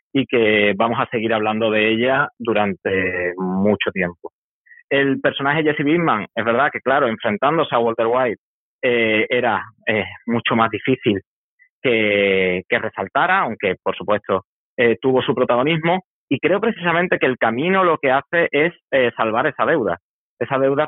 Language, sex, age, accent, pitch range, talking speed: Spanish, male, 30-49, Spanish, 110-150 Hz, 160 wpm